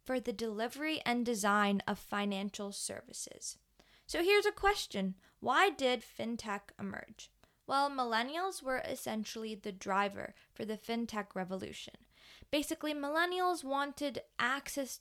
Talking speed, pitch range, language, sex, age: 120 wpm, 210-265 Hz, English, female, 10-29